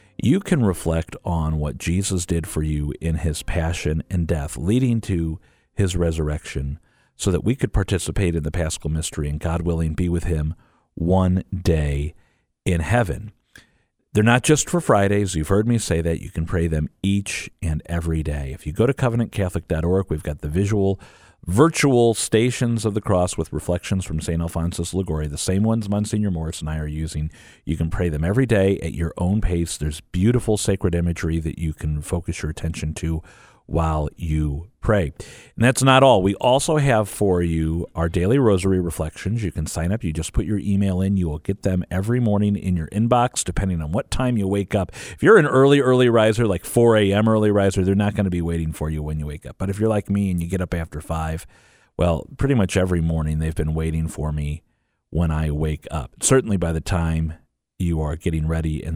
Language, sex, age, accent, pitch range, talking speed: English, male, 50-69, American, 80-105 Hz, 210 wpm